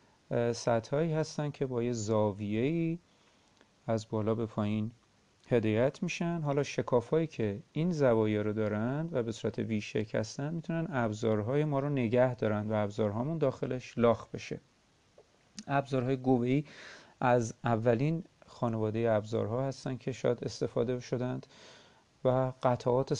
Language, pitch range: Persian, 115-150 Hz